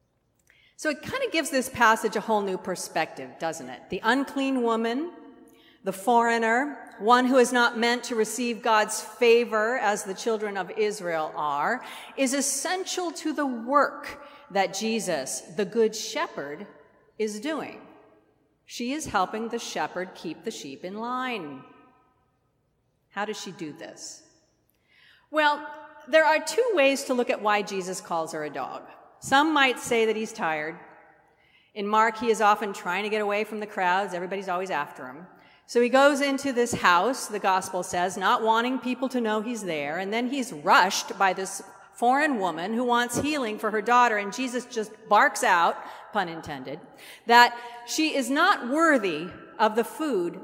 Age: 40-59